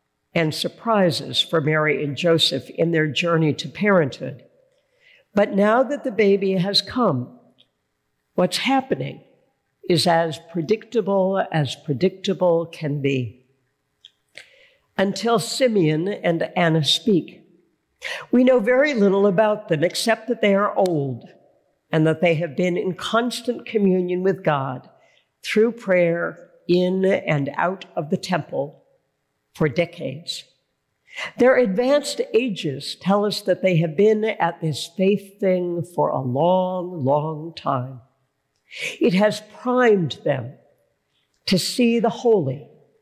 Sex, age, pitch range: female, 60-79, 160-220 Hz